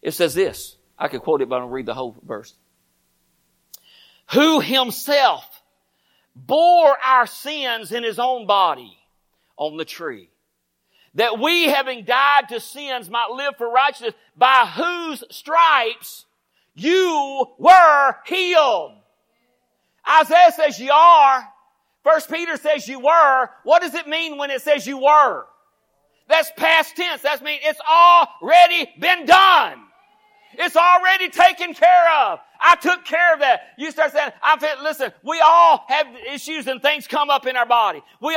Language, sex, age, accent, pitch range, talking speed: English, male, 50-69, American, 260-325 Hz, 150 wpm